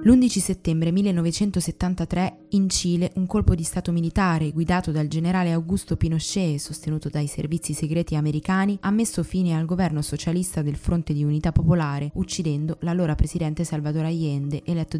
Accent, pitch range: native, 155-180 Hz